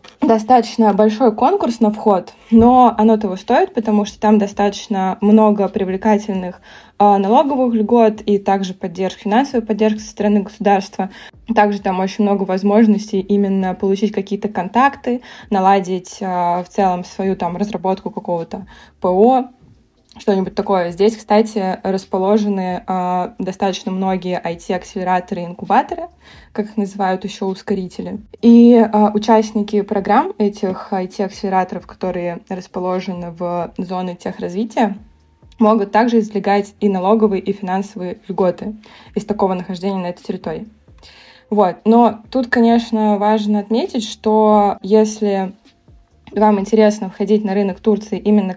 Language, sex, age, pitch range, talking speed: Russian, female, 20-39, 190-215 Hz, 120 wpm